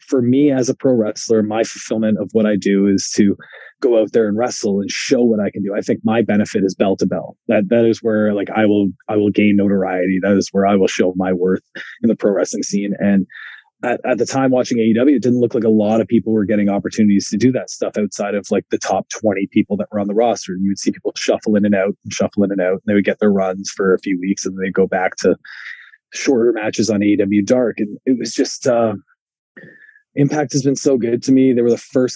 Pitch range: 100-115 Hz